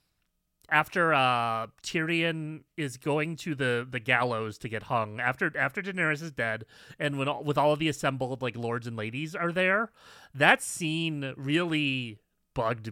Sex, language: male, English